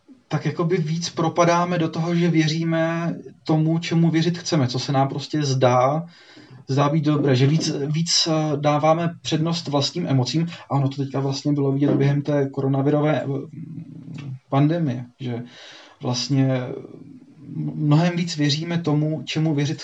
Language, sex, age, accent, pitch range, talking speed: Czech, male, 30-49, native, 130-145 Hz, 135 wpm